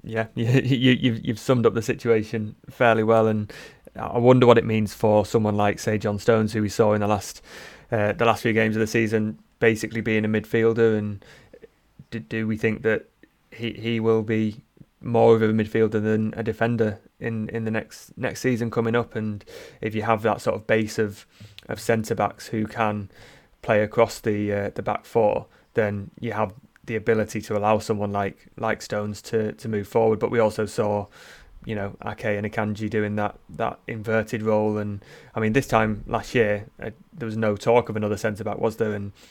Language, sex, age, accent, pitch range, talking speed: English, male, 20-39, British, 105-115 Hz, 205 wpm